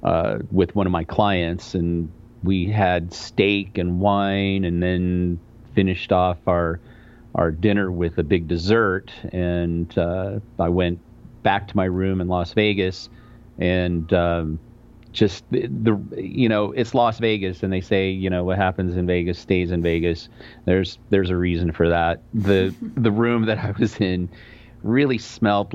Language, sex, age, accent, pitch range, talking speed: English, male, 40-59, American, 90-110 Hz, 165 wpm